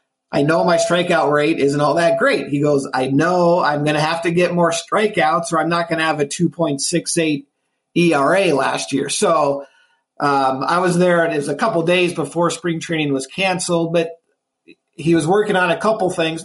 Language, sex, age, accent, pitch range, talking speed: English, male, 40-59, American, 150-185 Hz, 205 wpm